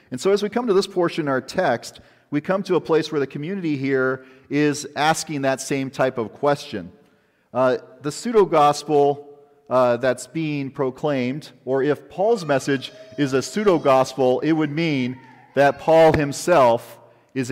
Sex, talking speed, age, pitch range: male, 160 wpm, 40-59, 120-160 Hz